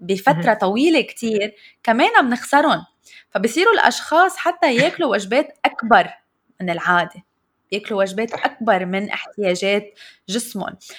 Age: 20-39